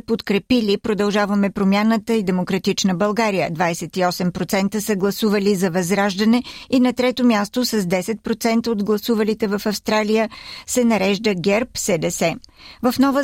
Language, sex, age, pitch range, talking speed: Bulgarian, female, 50-69, 195-230 Hz, 120 wpm